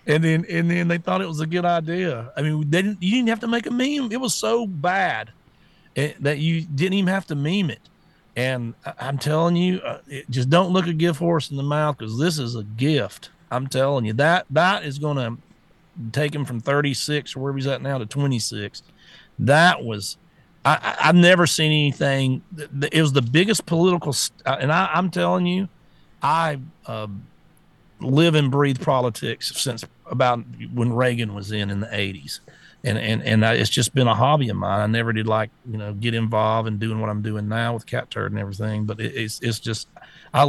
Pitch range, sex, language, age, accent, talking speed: 115-155 Hz, male, English, 40-59, American, 220 wpm